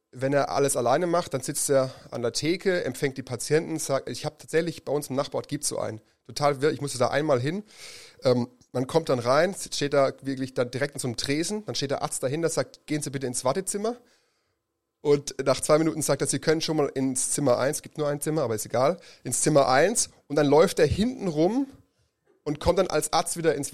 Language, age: German, 30-49